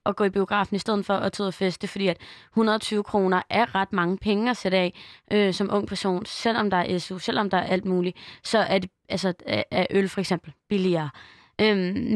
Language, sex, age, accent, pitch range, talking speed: Danish, female, 20-39, native, 185-210 Hz, 225 wpm